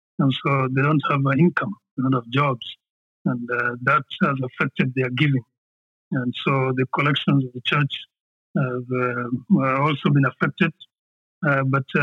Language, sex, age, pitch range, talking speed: English, male, 50-69, 130-150 Hz, 160 wpm